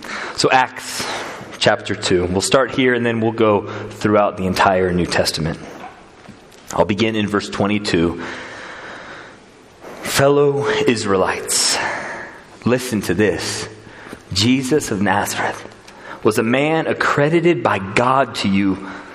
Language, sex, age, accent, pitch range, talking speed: English, male, 30-49, American, 115-170 Hz, 115 wpm